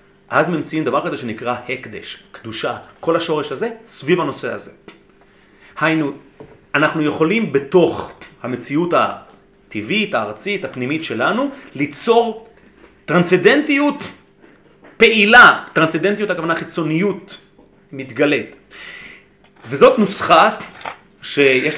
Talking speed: 90 wpm